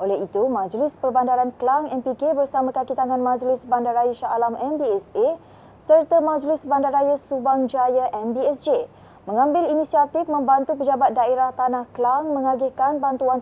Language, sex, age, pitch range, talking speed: Malay, female, 20-39, 245-295 Hz, 125 wpm